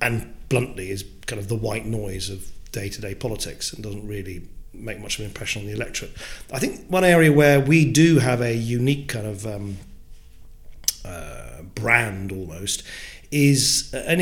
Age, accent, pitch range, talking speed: 40-59, British, 110-135 Hz, 165 wpm